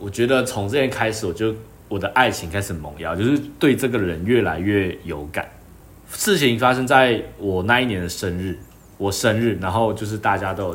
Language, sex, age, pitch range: Chinese, male, 20-39, 90-110 Hz